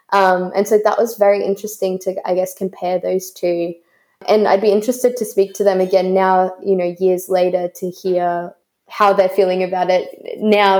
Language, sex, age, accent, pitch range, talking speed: English, female, 20-39, Australian, 185-205 Hz, 195 wpm